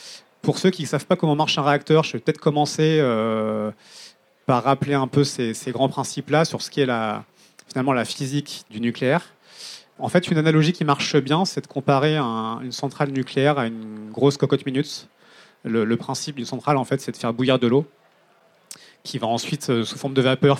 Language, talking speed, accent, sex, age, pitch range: French, 205 wpm, French, male, 30-49, 115-140 Hz